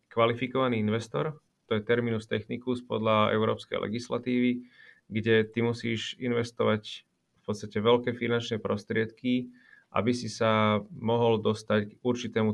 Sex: male